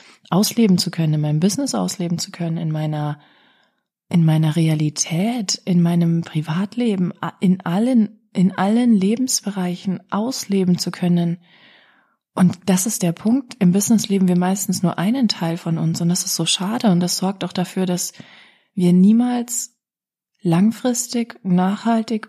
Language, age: German, 30-49